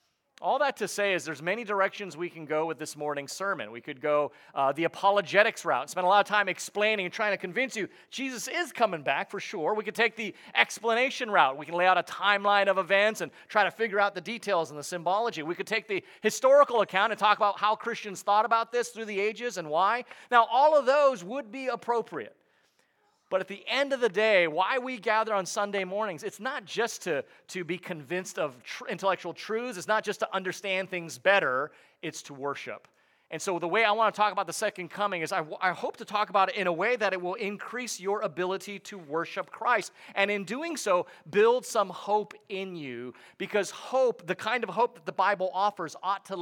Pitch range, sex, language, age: 180-225 Hz, male, English, 30-49